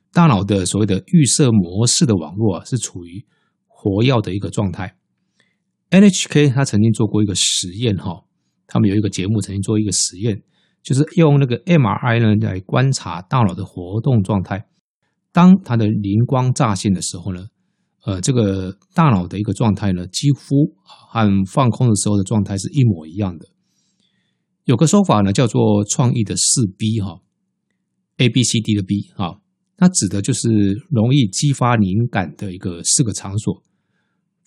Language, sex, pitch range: Chinese, male, 100-145 Hz